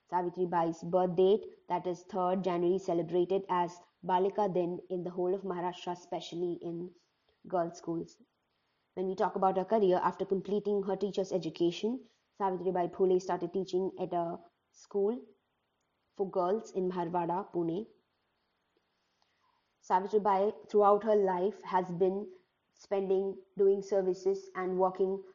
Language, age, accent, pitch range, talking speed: English, 20-39, Indian, 180-205 Hz, 135 wpm